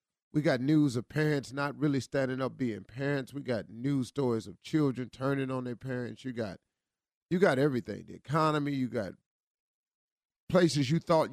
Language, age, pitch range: English, 40-59, 125-150 Hz